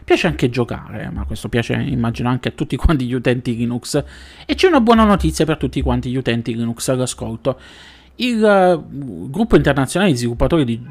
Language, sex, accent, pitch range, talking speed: Italian, male, native, 115-155 Hz, 180 wpm